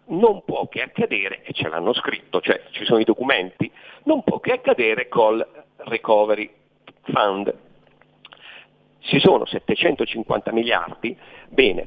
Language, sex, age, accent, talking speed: Italian, male, 50-69, native, 125 wpm